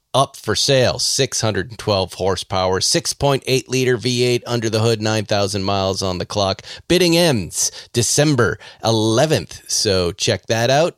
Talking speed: 130 wpm